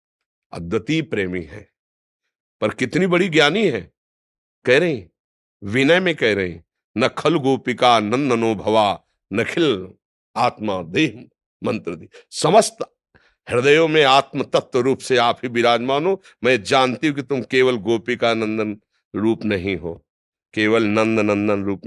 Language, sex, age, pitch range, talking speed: Hindi, male, 50-69, 110-160 Hz, 130 wpm